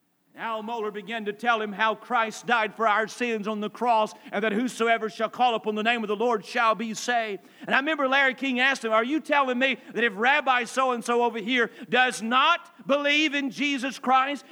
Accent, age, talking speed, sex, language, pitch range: American, 50-69, 225 wpm, male, English, 230-285 Hz